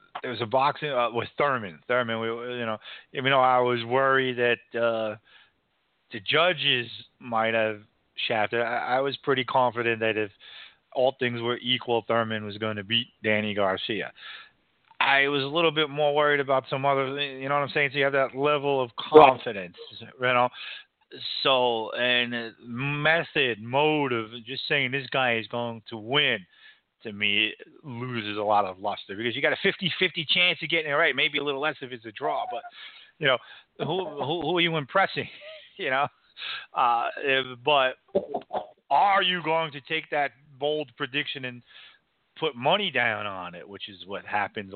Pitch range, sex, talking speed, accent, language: 115-145 Hz, male, 180 wpm, American, English